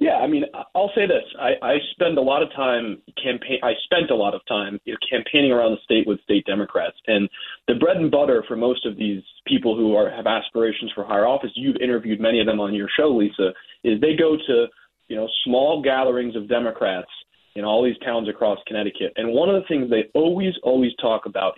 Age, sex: 30-49, male